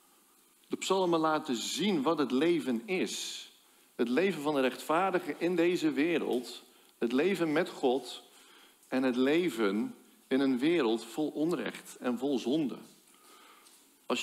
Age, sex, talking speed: 50-69, male, 135 wpm